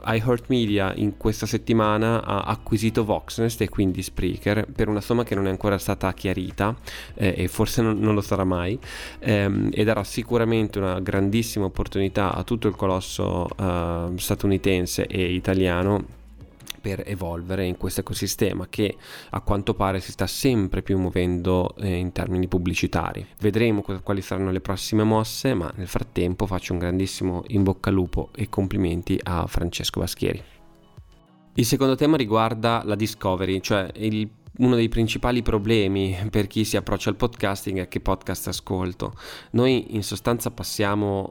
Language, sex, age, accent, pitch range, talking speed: Italian, male, 20-39, native, 95-110 Hz, 155 wpm